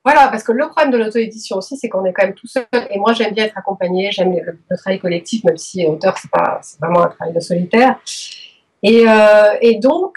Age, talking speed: 40-59, 240 wpm